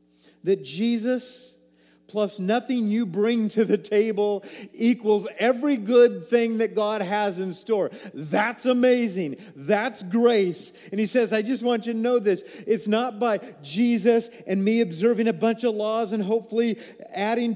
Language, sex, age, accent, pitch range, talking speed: English, male, 40-59, American, 190-235 Hz, 155 wpm